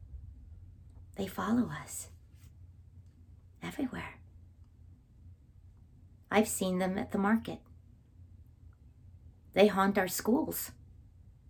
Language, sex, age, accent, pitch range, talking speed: English, female, 40-59, American, 90-110 Hz, 75 wpm